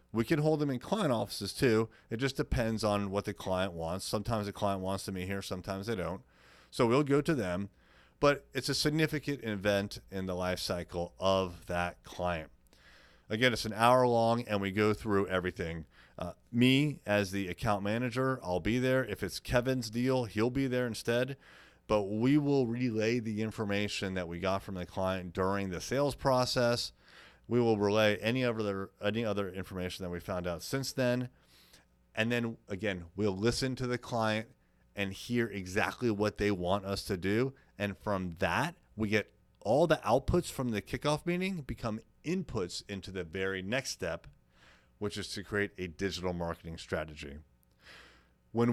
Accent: American